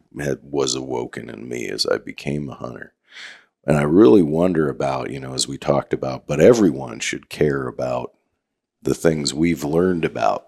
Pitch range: 70-80 Hz